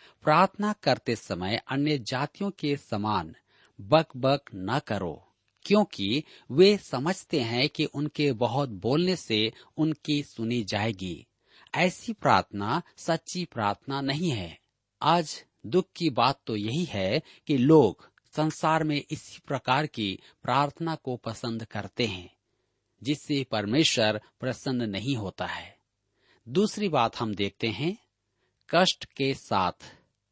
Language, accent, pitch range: Hindi, native, 110-160 Hz